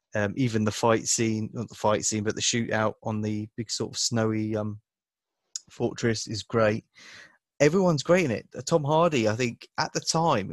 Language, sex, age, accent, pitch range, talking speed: English, male, 20-39, British, 105-120 Hz, 190 wpm